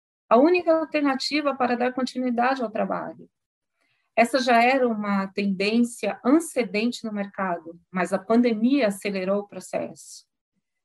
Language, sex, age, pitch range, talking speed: English, female, 40-59, 200-245 Hz, 120 wpm